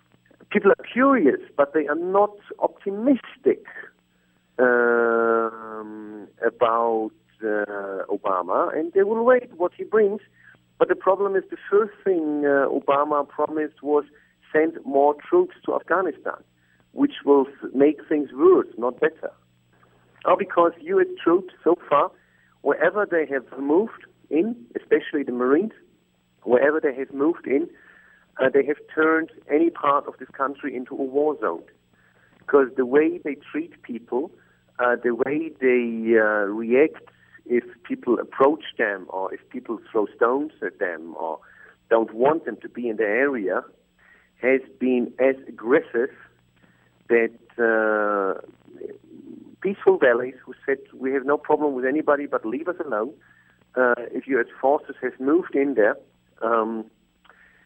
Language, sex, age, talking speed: English, male, 50-69, 140 wpm